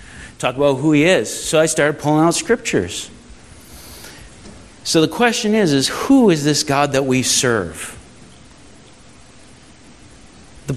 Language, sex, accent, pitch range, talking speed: English, male, American, 125-165 Hz, 135 wpm